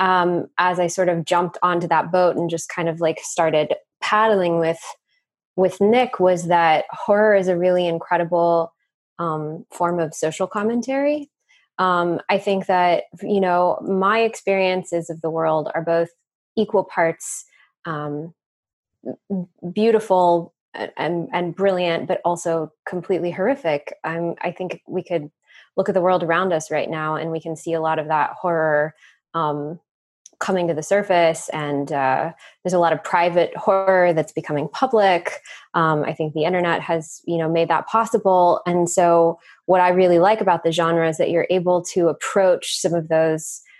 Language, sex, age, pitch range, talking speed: English, female, 20-39, 165-190 Hz, 170 wpm